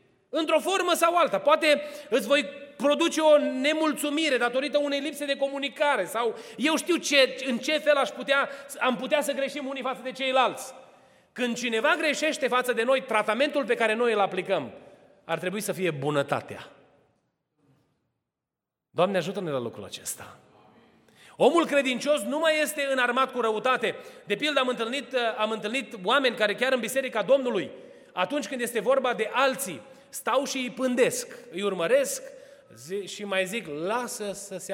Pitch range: 180-275 Hz